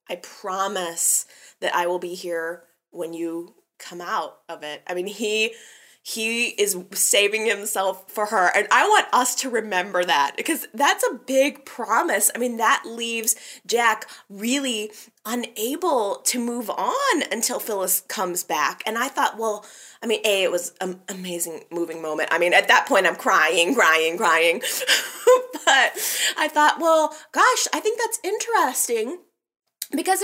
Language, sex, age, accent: English, female, 20-39, American